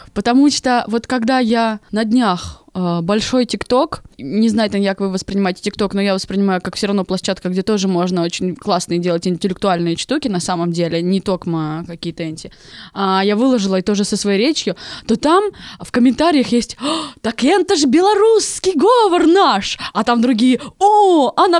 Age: 20-39